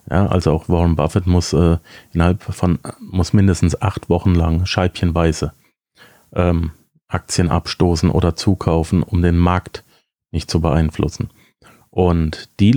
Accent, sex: German, male